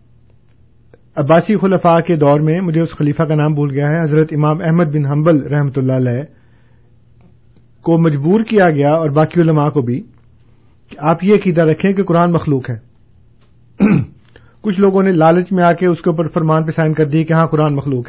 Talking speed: 190 wpm